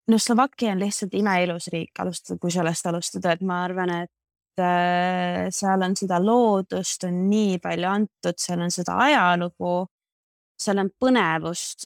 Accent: Finnish